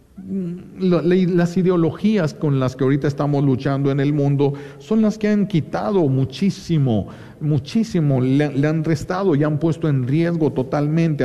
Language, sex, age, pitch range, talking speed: Spanish, male, 50-69, 135-175 Hz, 150 wpm